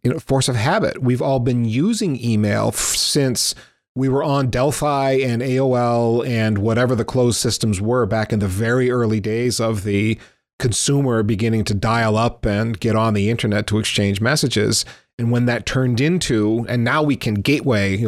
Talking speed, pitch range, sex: 180 wpm, 105-130 Hz, male